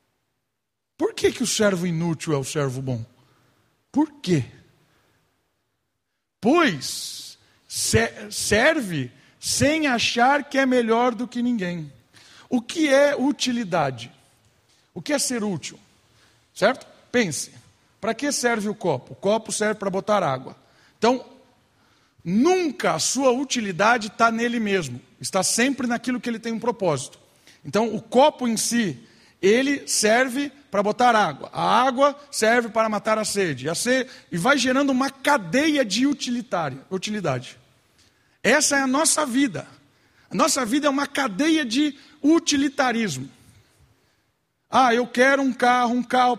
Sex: male